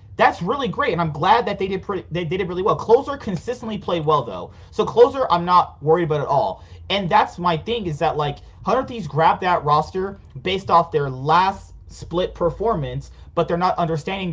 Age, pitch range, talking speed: 30-49, 145-185 Hz, 215 wpm